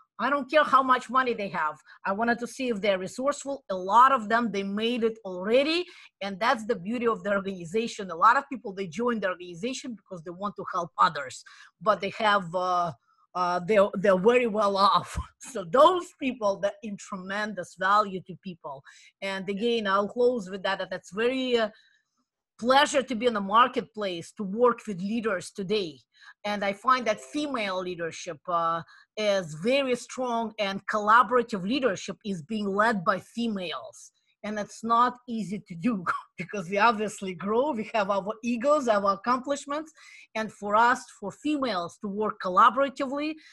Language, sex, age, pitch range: English, female, 30-49, 195-240 Hz